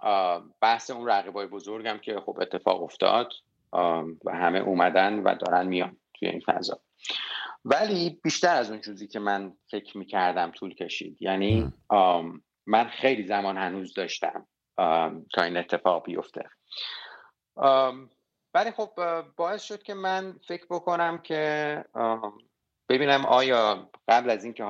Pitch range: 95-120 Hz